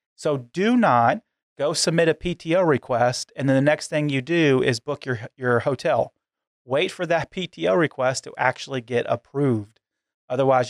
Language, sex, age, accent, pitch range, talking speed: English, male, 30-49, American, 115-135 Hz, 170 wpm